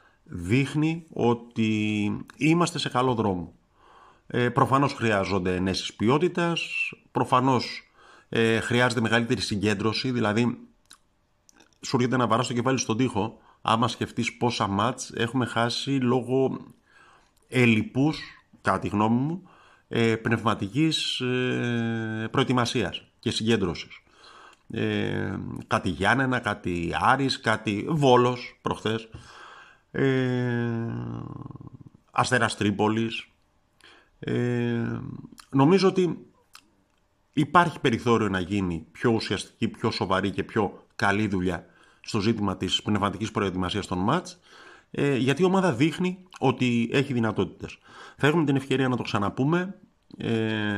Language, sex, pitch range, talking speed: Greek, male, 105-130 Hz, 110 wpm